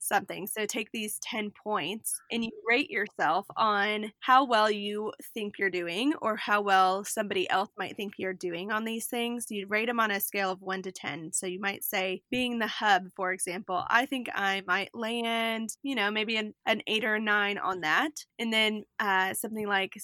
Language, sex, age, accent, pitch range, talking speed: English, female, 20-39, American, 195-225 Hz, 205 wpm